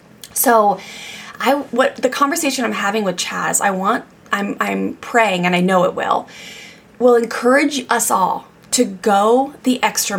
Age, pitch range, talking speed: 20-39, 185-230 Hz, 160 wpm